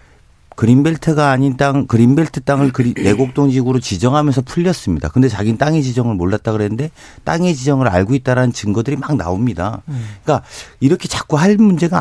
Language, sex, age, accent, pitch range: Korean, male, 40-59, native, 110-155 Hz